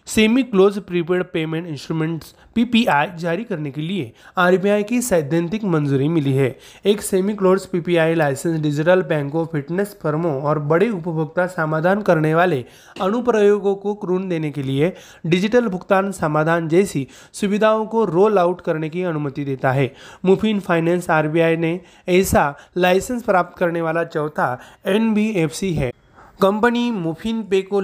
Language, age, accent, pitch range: Marathi, 30-49, native, 160-195 Hz